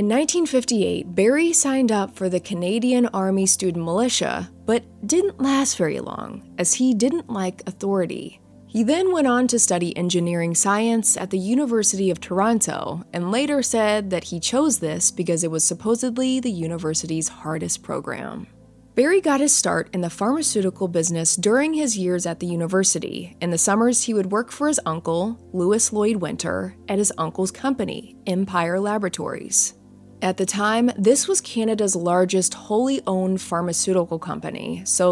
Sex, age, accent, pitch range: female, 20-39, American, 180-245 Hz